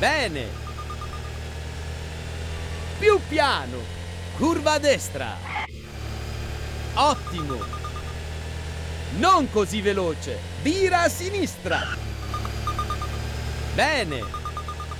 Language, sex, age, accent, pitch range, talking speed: Italian, male, 50-69, native, 80-105 Hz, 55 wpm